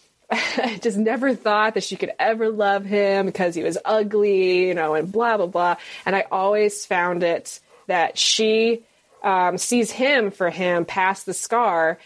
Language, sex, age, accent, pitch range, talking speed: English, female, 20-39, American, 175-220 Hz, 175 wpm